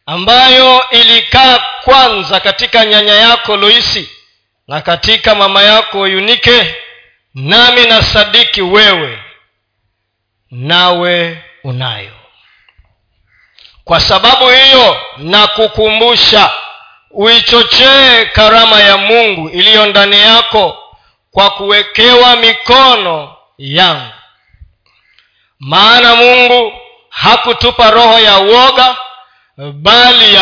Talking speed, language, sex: 80 wpm, Swahili, male